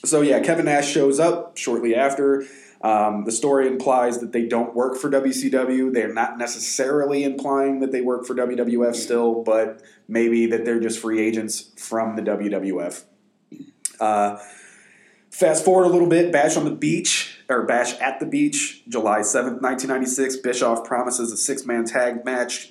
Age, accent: 20-39, American